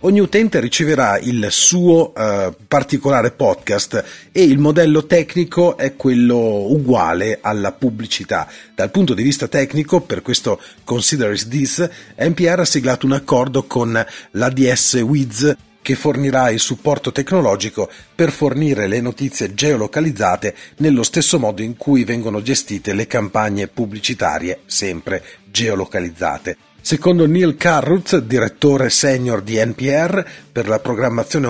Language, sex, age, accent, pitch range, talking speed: Italian, male, 40-59, native, 105-145 Hz, 125 wpm